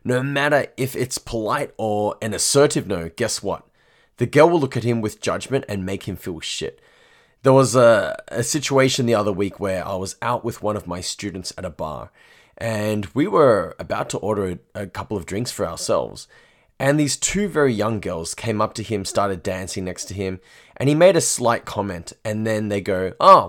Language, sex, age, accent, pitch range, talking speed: English, male, 20-39, Australian, 95-130 Hz, 210 wpm